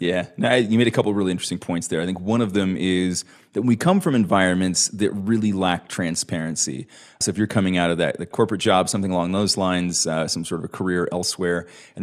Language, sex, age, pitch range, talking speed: English, male, 30-49, 100-135 Hz, 230 wpm